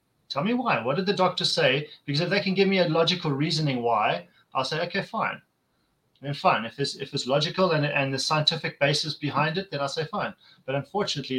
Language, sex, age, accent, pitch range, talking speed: English, male, 30-49, German, 130-165 Hz, 225 wpm